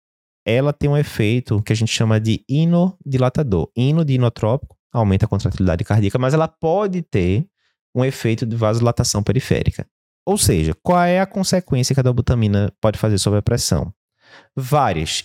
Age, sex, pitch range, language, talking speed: 20-39, male, 105-150 Hz, Portuguese, 155 wpm